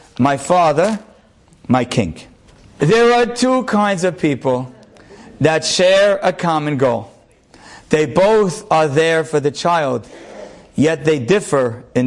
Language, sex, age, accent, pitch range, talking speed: English, male, 50-69, American, 155-235 Hz, 130 wpm